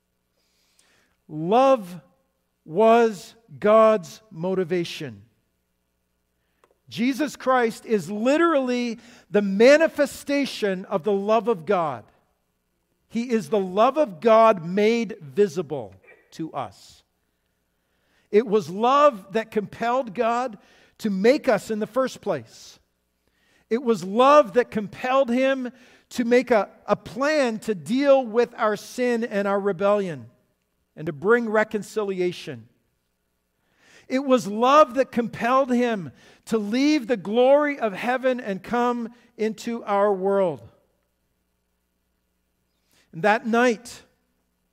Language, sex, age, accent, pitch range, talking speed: English, male, 50-69, American, 160-240 Hz, 110 wpm